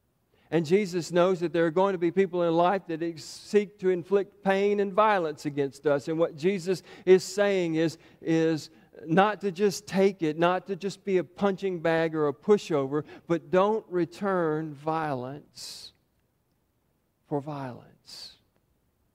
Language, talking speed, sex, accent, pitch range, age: English, 155 wpm, male, American, 135-170 Hz, 50-69